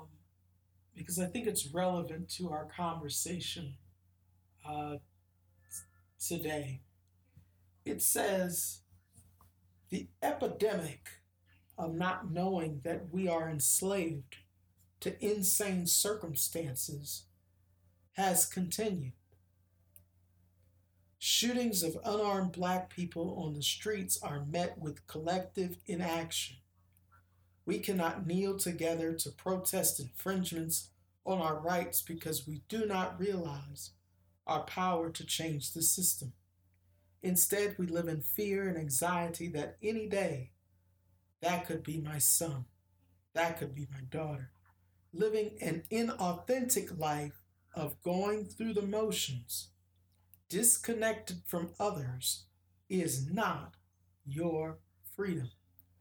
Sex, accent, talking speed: male, American, 105 wpm